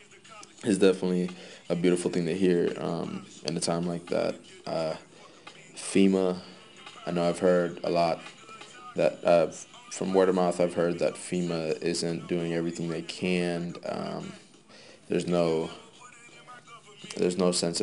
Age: 20-39